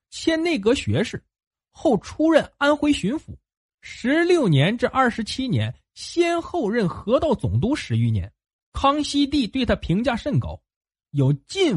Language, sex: Chinese, male